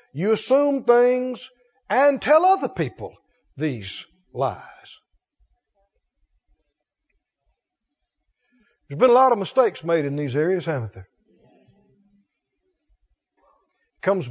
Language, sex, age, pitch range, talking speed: English, male, 60-79, 160-235 Hz, 90 wpm